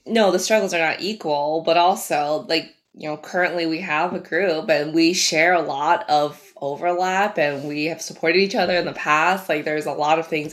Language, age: English, 20-39